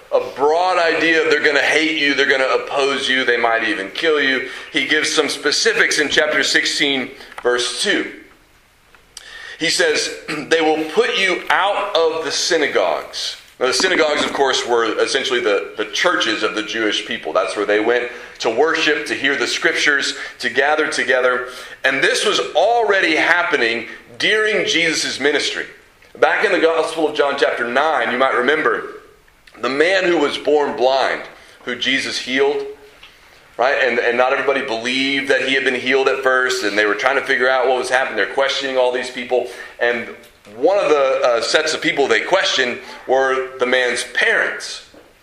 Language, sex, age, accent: English, male, 30-49, American